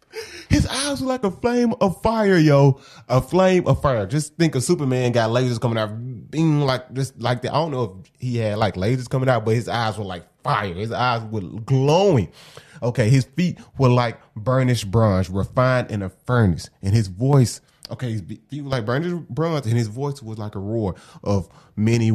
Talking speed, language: 205 wpm, English